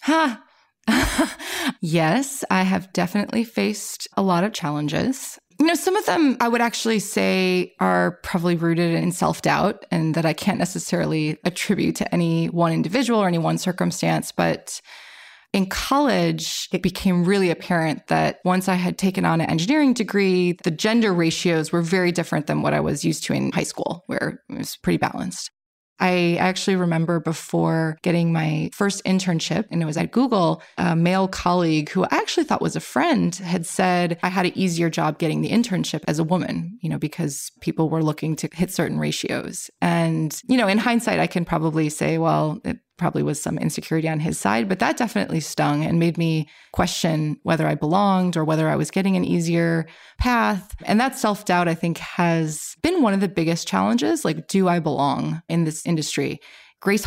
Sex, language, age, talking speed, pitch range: female, English, 20-39, 185 wpm, 160-200 Hz